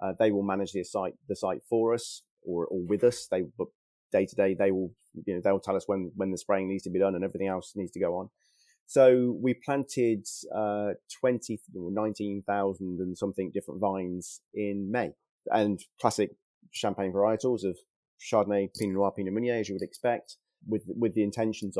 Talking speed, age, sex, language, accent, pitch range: 200 wpm, 30-49, male, English, British, 95-110 Hz